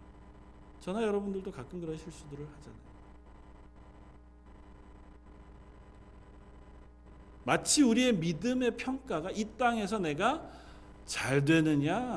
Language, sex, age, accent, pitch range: Korean, male, 40-59, native, 125-195 Hz